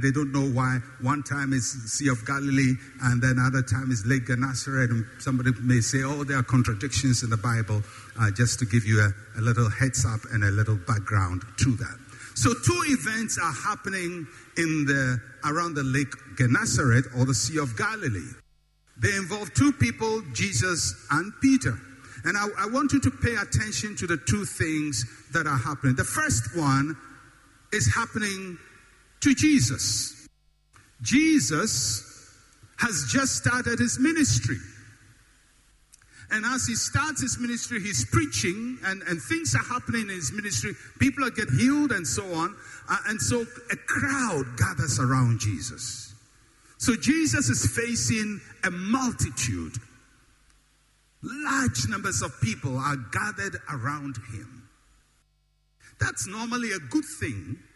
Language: English